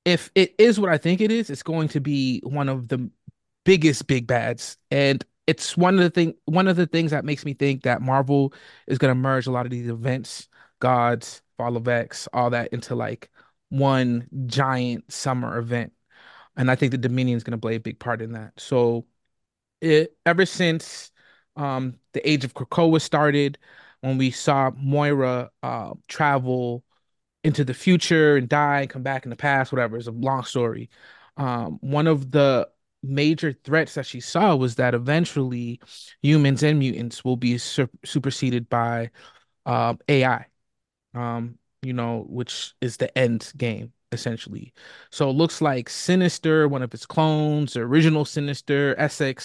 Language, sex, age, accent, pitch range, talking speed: English, male, 30-49, American, 125-155 Hz, 175 wpm